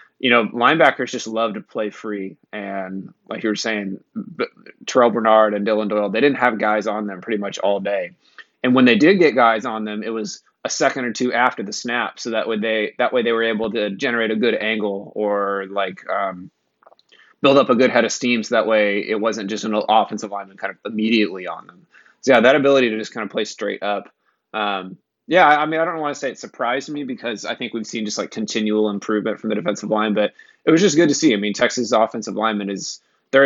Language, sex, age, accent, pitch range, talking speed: English, male, 20-39, American, 105-115 Hz, 240 wpm